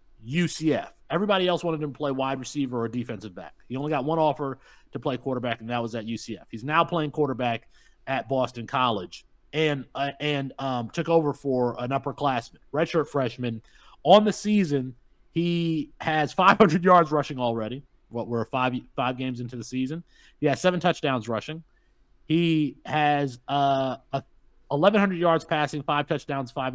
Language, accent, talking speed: English, American, 170 wpm